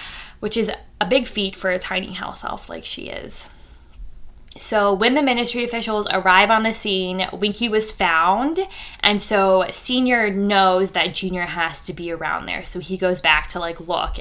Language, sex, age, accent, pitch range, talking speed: English, female, 10-29, American, 180-210 Hz, 180 wpm